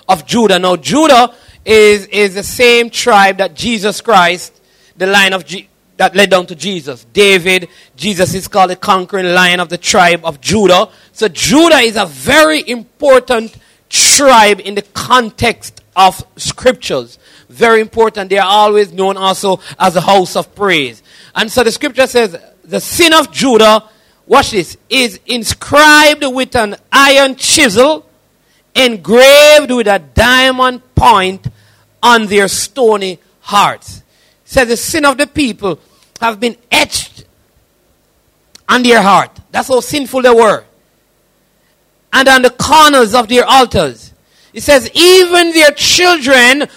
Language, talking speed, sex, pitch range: English, 145 wpm, male, 195-270 Hz